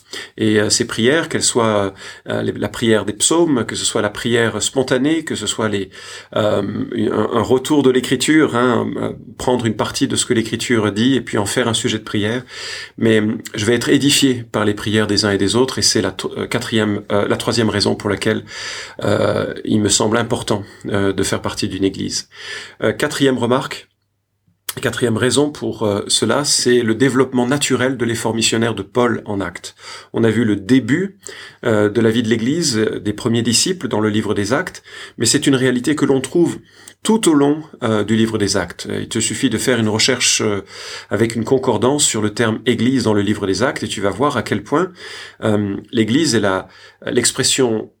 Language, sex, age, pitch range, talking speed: French, male, 40-59, 105-130 Hz, 195 wpm